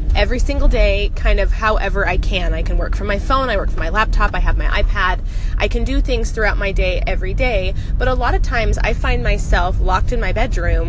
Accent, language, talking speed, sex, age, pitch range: American, English, 245 wpm, female, 20-39, 90-100 Hz